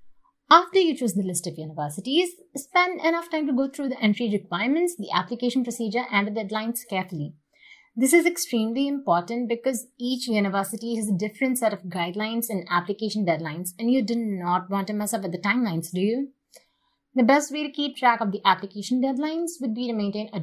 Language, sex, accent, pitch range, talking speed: English, female, Indian, 190-250 Hz, 195 wpm